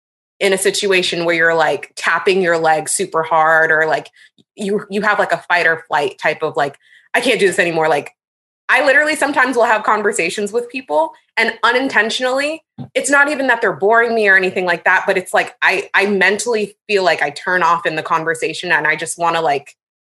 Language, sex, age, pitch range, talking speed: English, female, 20-39, 160-210 Hz, 210 wpm